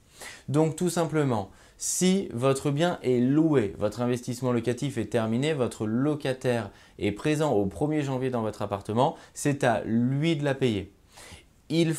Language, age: French, 20-39